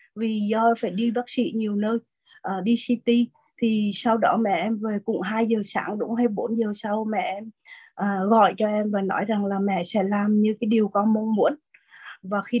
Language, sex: Vietnamese, female